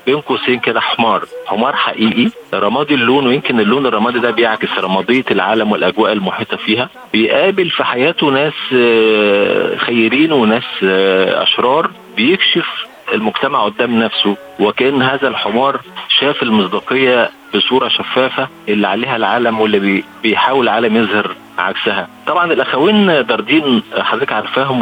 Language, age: Arabic, 50-69